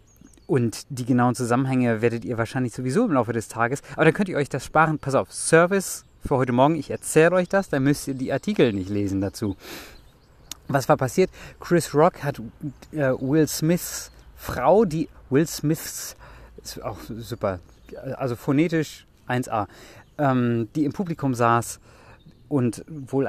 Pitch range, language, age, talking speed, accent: 120-145 Hz, German, 30-49, 160 wpm, German